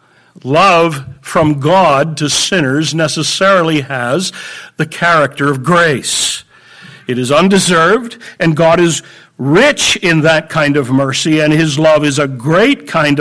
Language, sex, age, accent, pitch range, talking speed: English, male, 60-79, American, 155-220 Hz, 135 wpm